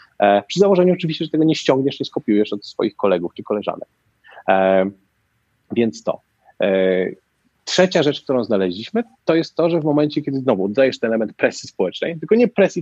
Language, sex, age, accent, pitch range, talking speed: Polish, male, 30-49, native, 105-160 Hz, 170 wpm